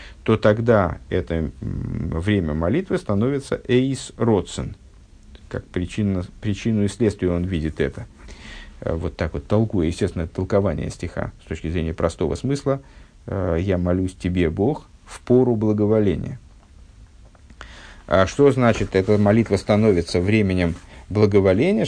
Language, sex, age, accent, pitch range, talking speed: Russian, male, 50-69, native, 90-120 Hz, 130 wpm